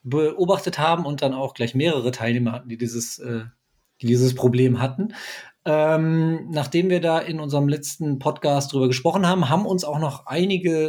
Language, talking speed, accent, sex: German, 170 wpm, German, male